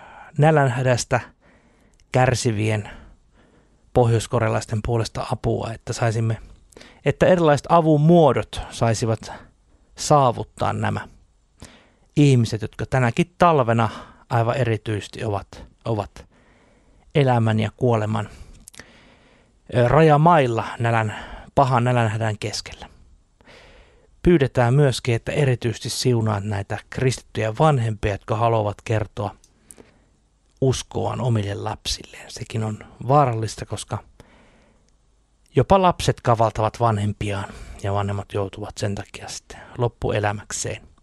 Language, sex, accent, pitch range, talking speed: Finnish, male, native, 105-130 Hz, 85 wpm